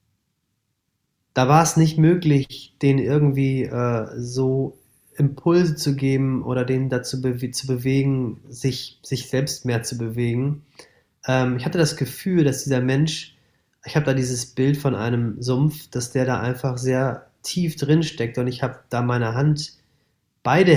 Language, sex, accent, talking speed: German, male, German, 155 wpm